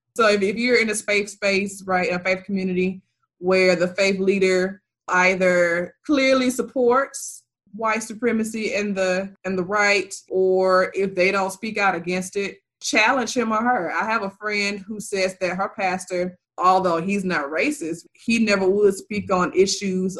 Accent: American